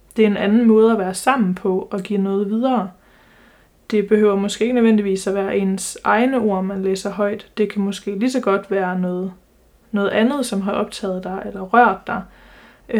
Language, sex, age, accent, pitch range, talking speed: Danish, female, 20-39, native, 195-220 Hz, 195 wpm